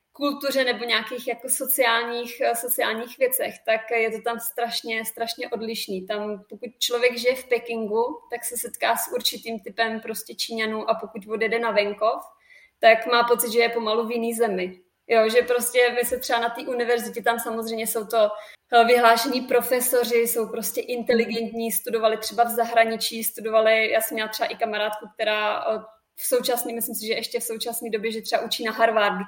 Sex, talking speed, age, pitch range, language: female, 175 wpm, 20-39, 220-240 Hz, Czech